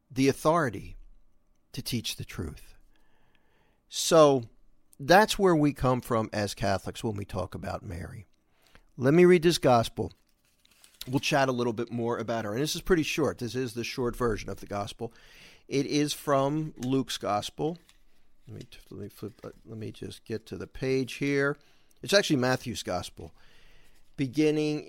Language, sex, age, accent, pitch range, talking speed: English, male, 50-69, American, 110-150 Hz, 165 wpm